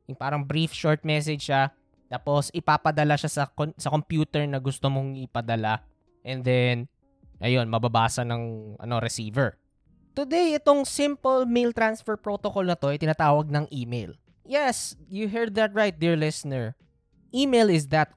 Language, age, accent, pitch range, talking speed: Filipino, 20-39, native, 135-185 Hz, 150 wpm